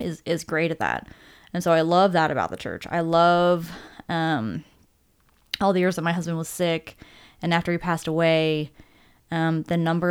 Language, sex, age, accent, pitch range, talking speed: English, female, 20-39, American, 155-180 Hz, 190 wpm